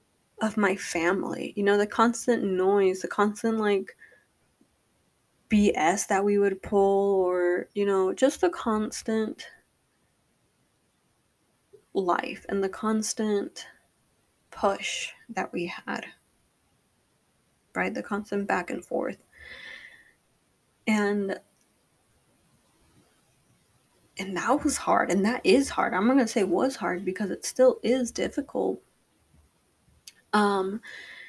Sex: female